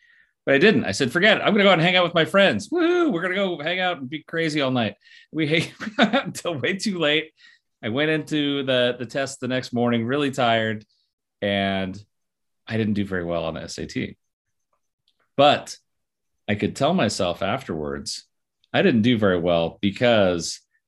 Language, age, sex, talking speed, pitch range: English, 30-49, male, 200 wpm, 95-140 Hz